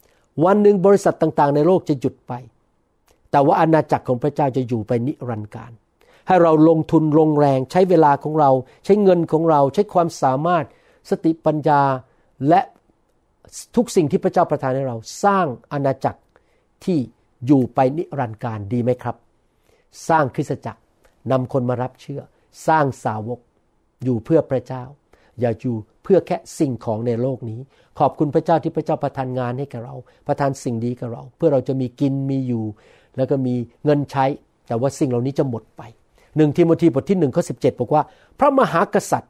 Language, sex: Thai, male